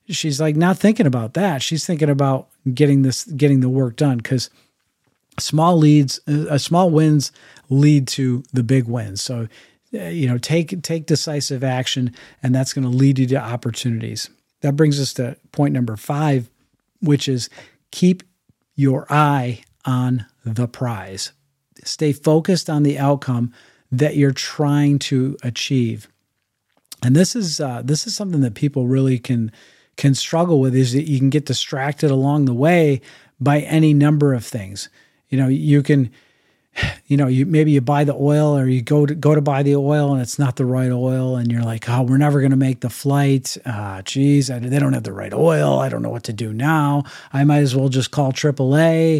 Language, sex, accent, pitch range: English, male, American, 130-150 Hz